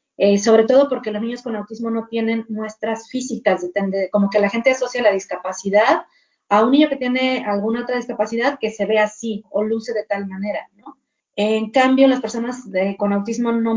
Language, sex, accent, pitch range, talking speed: Spanish, female, Mexican, 200-250 Hz, 195 wpm